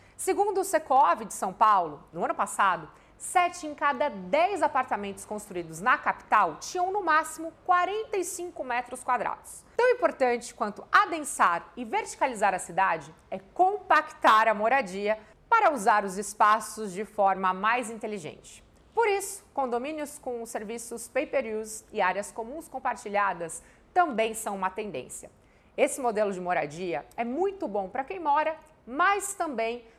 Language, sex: English, female